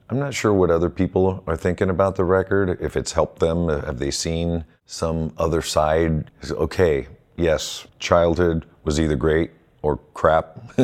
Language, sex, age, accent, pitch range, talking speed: English, male, 40-59, American, 75-100 Hz, 160 wpm